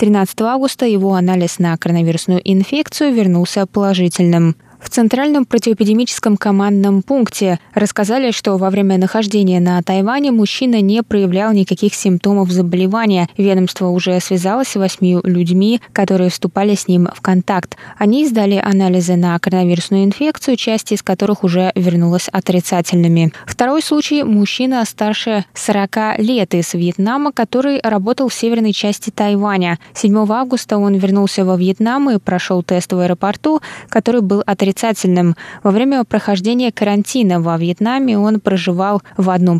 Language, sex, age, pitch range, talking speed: Russian, female, 20-39, 185-225 Hz, 135 wpm